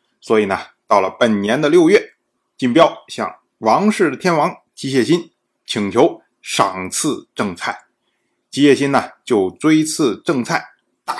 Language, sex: Chinese, male